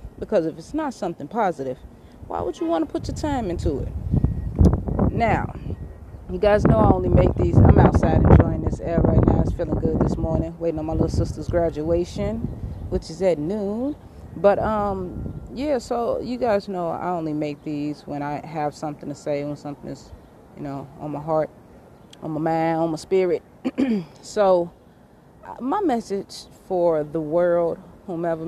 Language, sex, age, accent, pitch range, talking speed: English, female, 30-49, American, 160-215 Hz, 175 wpm